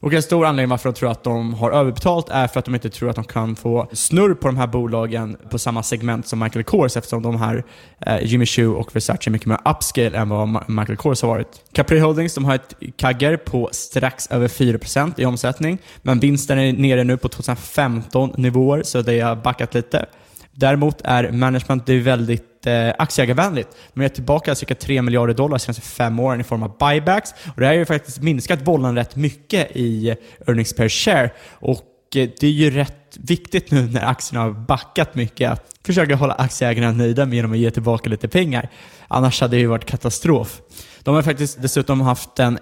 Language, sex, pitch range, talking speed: Swedish, male, 115-145 Hz, 205 wpm